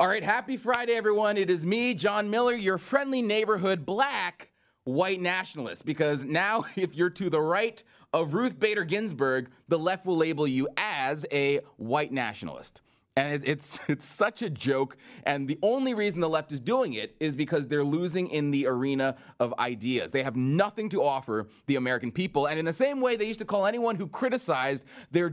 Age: 30-49